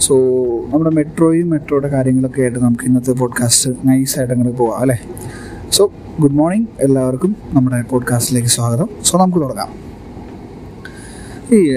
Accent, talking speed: native, 120 wpm